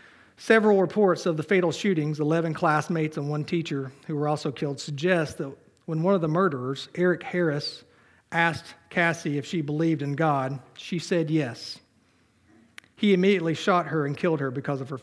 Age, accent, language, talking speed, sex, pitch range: 40-59, American, English, 175 wpm, male, 135-170 Hz